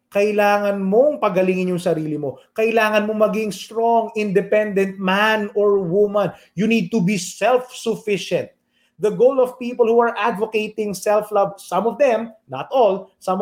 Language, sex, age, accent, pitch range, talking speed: English, male, 30-49, Filipino, 170-225 Hz, 150 wpm